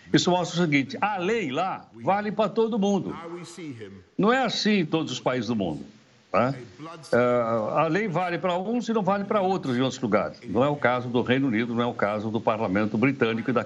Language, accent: Portuguese, Brazilian